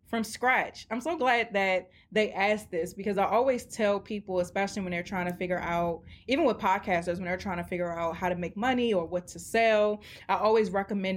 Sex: female